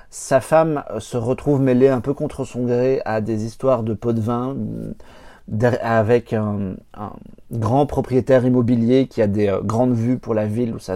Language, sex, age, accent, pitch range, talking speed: French, male, 40-59, French, 105-130 Hz, 180 wpm